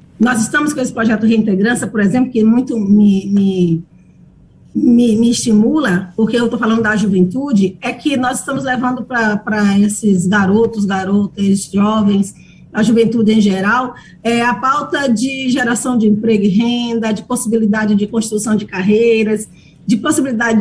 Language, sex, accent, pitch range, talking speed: Portuguese, female, Brazilian, 205-250 Hz, 145 wpm